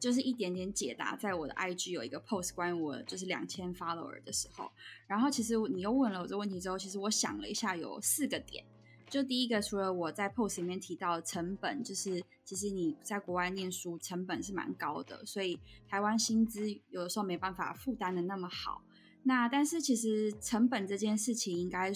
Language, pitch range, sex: Chinese, 185-235 Hz, female